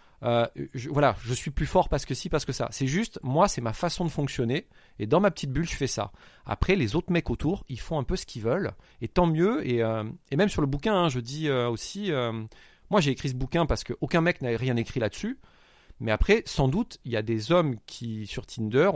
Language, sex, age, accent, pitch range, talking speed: French, male, 30-49, French, 120-160 Hz, 260 wpm